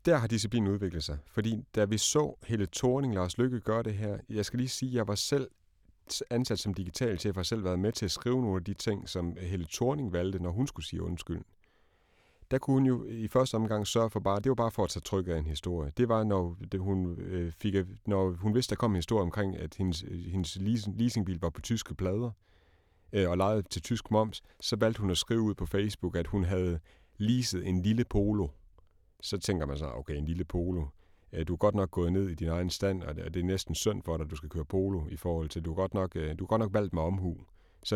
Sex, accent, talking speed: male, native, 240 wpm